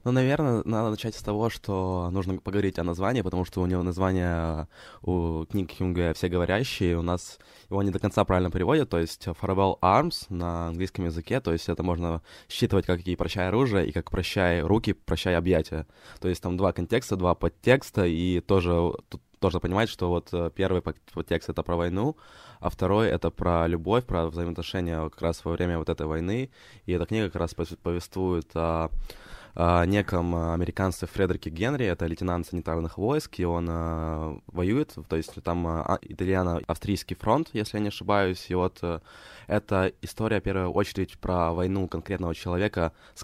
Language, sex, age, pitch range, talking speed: Ukrainian, male, 20-39, 85-95 Hz, 175 wpm